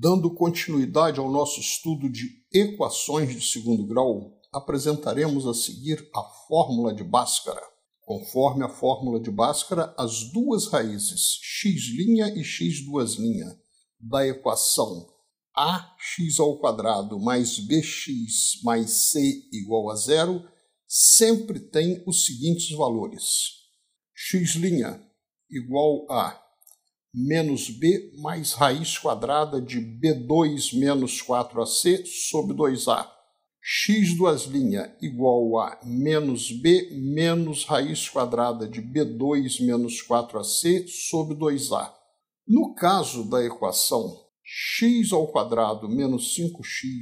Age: 60-79